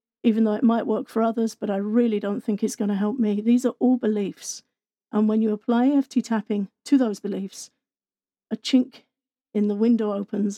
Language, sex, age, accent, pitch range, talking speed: English, female, 50-69, British, 205-235 Hz, 205 wpm